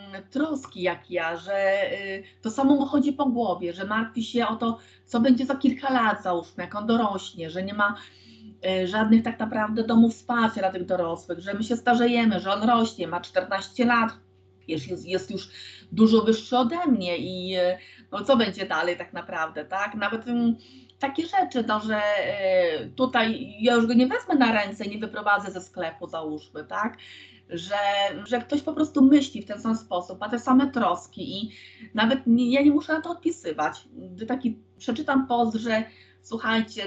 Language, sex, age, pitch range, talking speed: Polish, female, 30-49, 185-245 Hz, 185 wpm